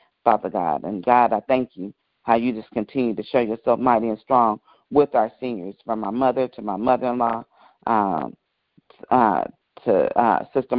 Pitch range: 115-130 Hz